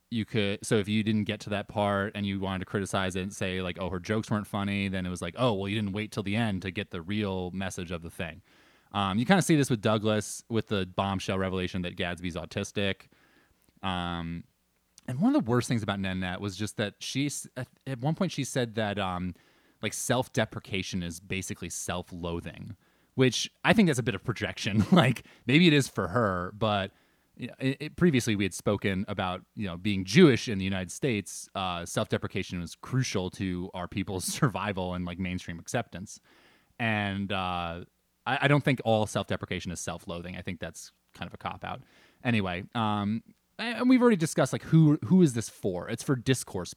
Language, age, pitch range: English, 20-39, 95-120 Hz